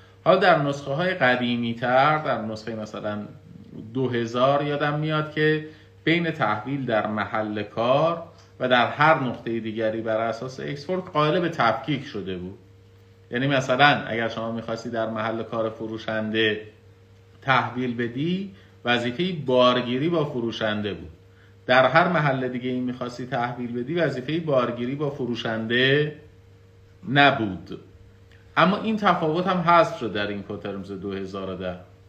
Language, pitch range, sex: Persian, 105-135 Hz, male